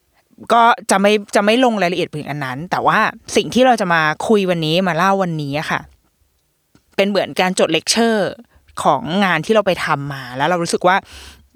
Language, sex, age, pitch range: Thai, female, 20-39, 160-220 Hz